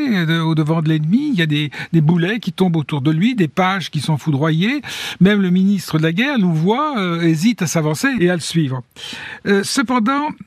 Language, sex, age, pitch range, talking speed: French, male, 60-79, 155-215 Hz, 210 wpm